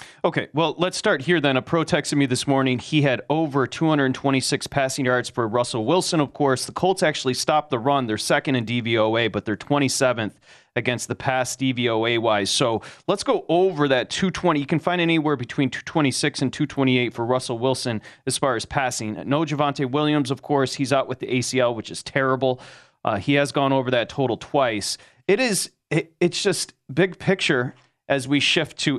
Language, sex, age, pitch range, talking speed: English, male, 30-49, 125-150 Hz, 185 wpm